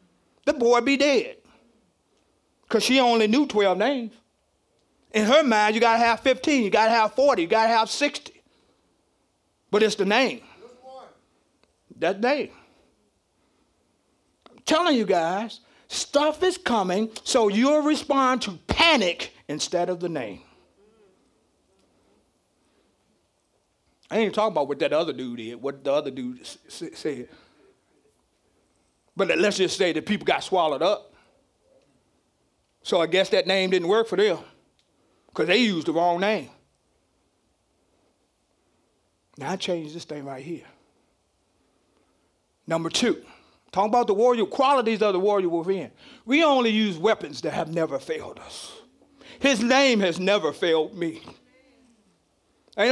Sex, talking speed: male, 140 wpm